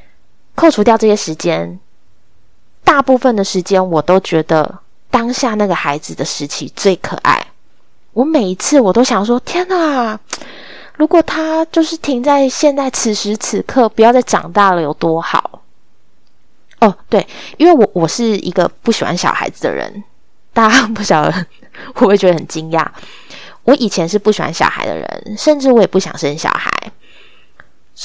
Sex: female